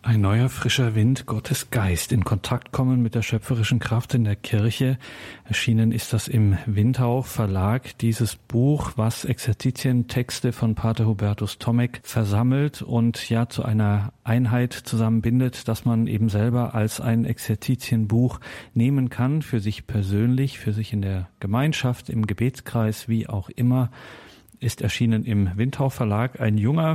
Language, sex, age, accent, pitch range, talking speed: German, male, 40-59, German, 105-125 Hz, 145 wpm